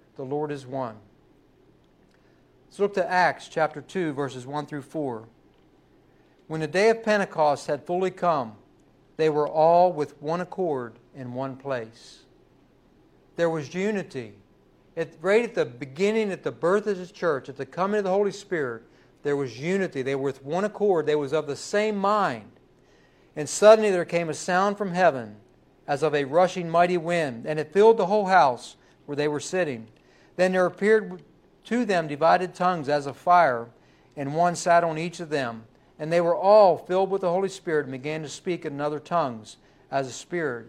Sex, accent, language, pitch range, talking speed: male, American, English, 140-180 Hz, 185 wpm